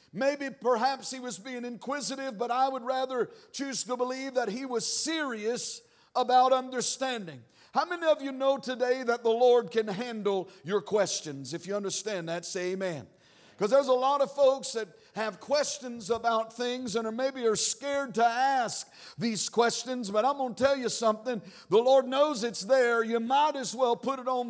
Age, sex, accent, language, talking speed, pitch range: 60-79, male, American, English, 190 wpm, 225-265 Hz